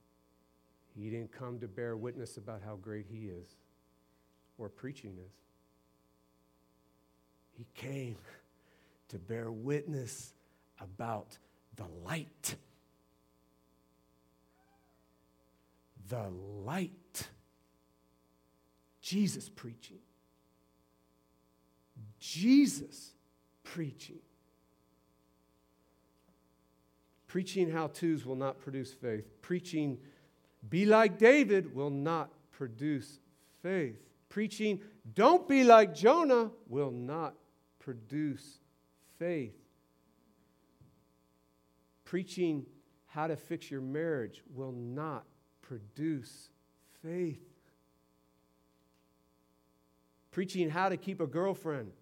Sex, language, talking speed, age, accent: male, Czech, 75 wpm, 50-69, American